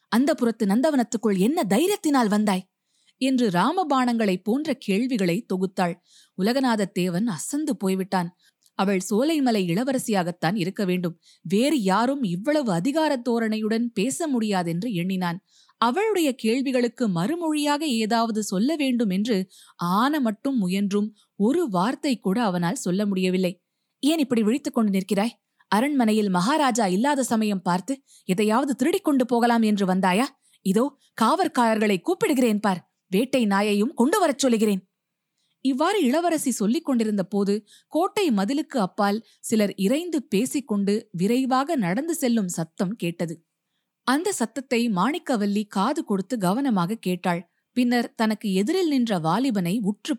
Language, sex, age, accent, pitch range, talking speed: Tamil, female, 20-39, native, 190-260 Hz, 115 wpm